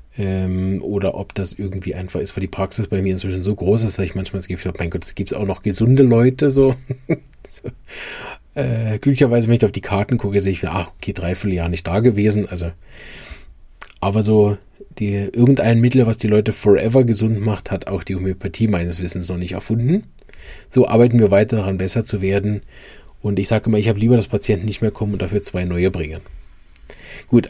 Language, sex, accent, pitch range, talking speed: German, male, German, 95-120 Hz, 205 wpm